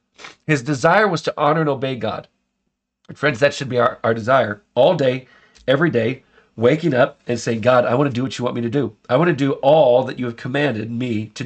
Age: 40-59